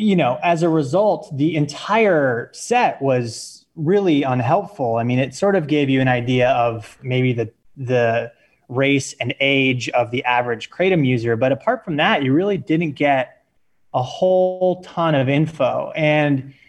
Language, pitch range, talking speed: English, 125-155 Hz, 165 wpm